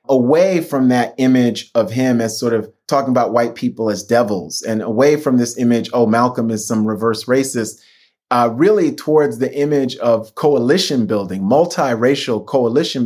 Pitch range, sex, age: 120-145 Hz, male, 30-49